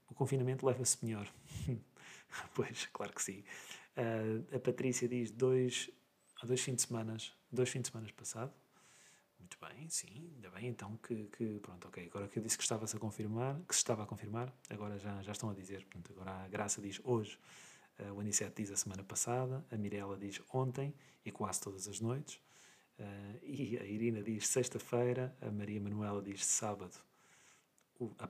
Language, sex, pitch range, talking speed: Portuguese, male, 105-125 Hz, 185 wpm